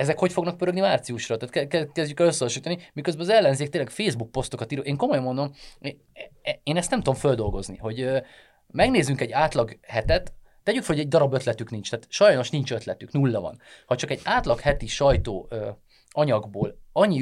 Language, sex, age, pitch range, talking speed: Hungarian, male, 30-49, 115-155 Hz, 170 wpm